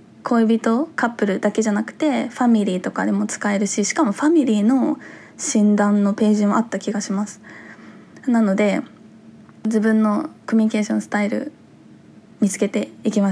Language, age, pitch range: Japanese, 20-39, 205-235 Hz